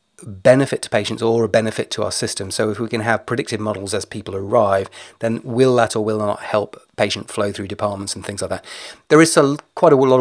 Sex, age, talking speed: male, 30-49, 235 wpm